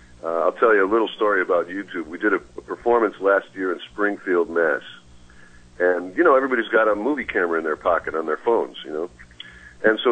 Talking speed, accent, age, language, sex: 220 wpm, American, 50-69, English, male